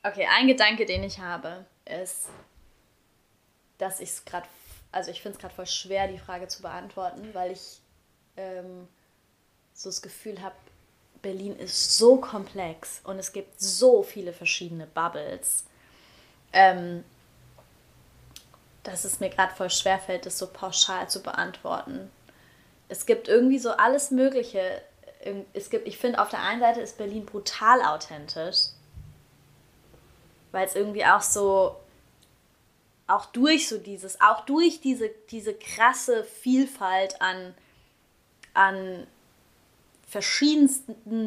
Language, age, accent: German, 20-39, German